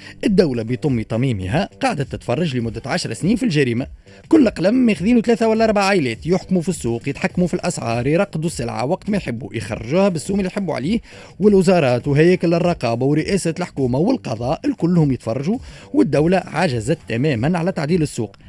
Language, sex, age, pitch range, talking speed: Arabic, male, 30-49, 130-205 Hz, 155 wpm